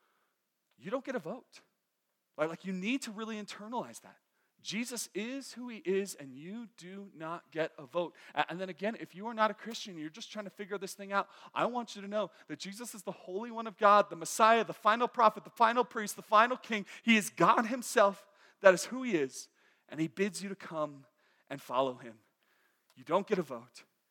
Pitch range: 160-215 Hz